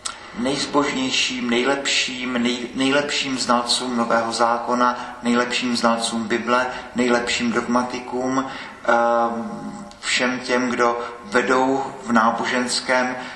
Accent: native